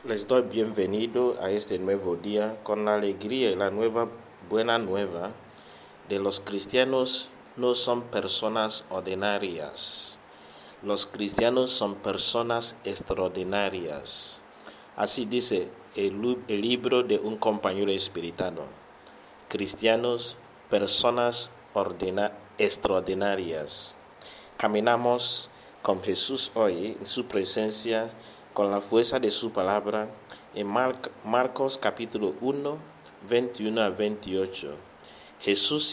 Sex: male